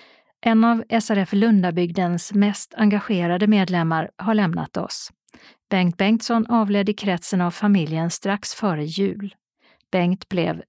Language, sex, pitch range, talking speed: Swedish, female, 175-215 Hz, 125 wpm